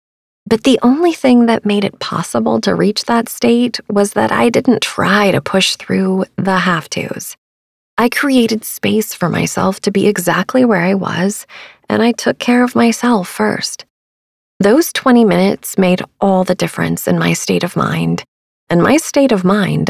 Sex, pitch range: female, 170-225 Hz